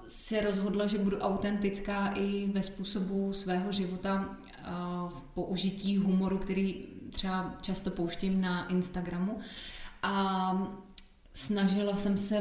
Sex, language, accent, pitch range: female, Czech, native, 185-200 Hz